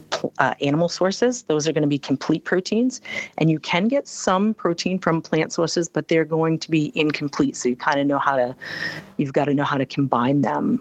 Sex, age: female, 40-59